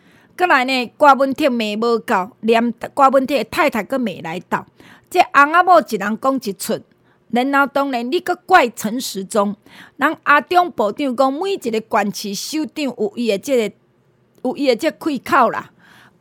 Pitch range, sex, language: 215-295 Hz, female, Chinese